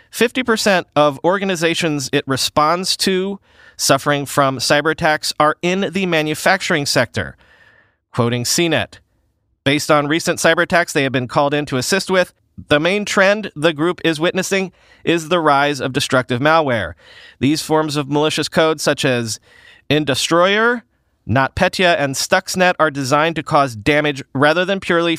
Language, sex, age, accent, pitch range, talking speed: English, male, 30-49, American, 135-175 Hz, 145 wpm